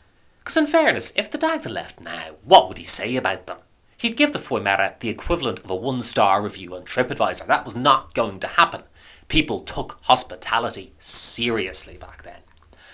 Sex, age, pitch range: male, 30-49, 90-120 Hz